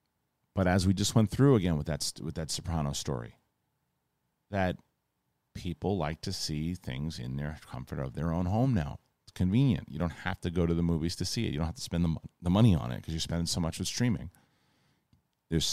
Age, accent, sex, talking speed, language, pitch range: 40-59, American, male, 215 wpm, English, 85-105 Hz